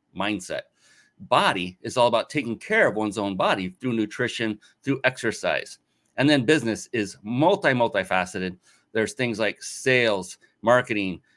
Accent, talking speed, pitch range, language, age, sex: American, 130 wpm, 105-130 Hz, English, 30-49, male